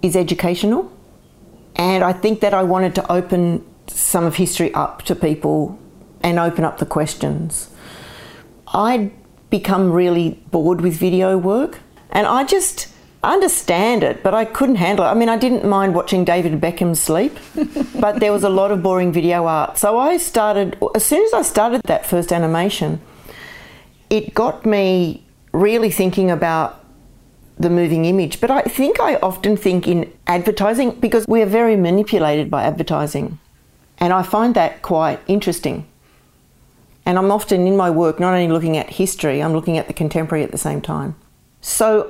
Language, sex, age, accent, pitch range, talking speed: English, female, 50-69, Australian, 165-205 Hz, 170 wpm